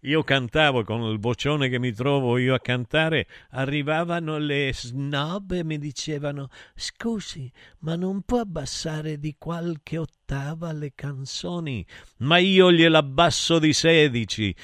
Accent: native